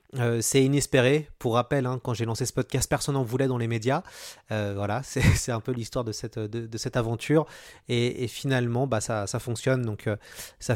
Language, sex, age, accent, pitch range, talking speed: French, male, 30-49, French, 115-135 Hz, 225 wpm